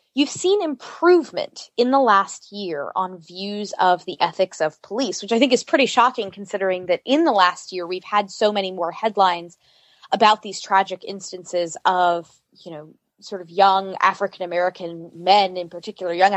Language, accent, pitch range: English, American, 175-215 Hz